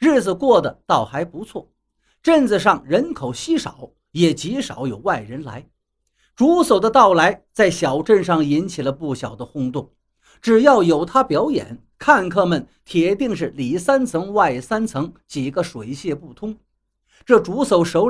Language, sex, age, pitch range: Chinese, male, 50-69, 155-245 Hz